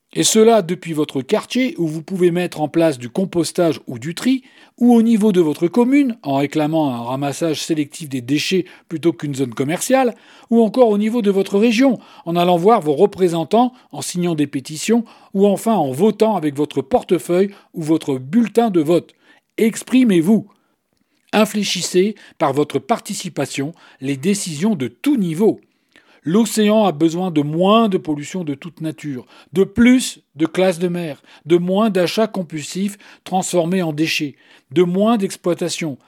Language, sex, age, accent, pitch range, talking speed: French, male, 40-59, French, 155-220 Hz, 160 wpm